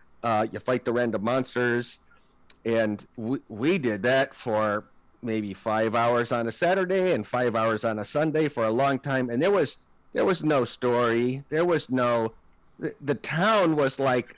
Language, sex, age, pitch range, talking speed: English, male, 50-69, 115-145 Hz, 180 wpm